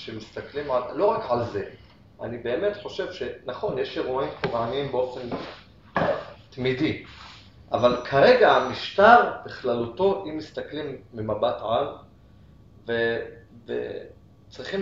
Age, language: 30-49, Hebrew